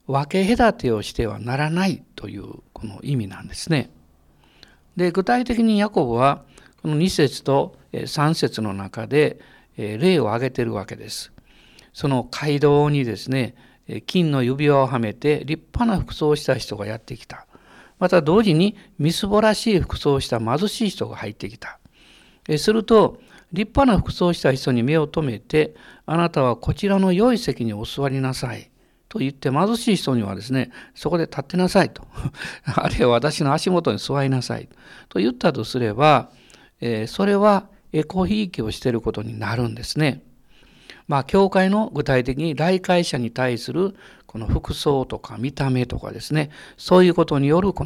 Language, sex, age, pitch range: Japanese, male, 60-79, 115-180 Hz